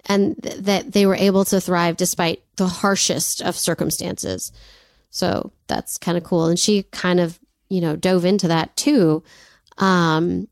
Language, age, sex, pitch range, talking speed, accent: English, 30-49, female, 175-215 Hz, 160 wpm, American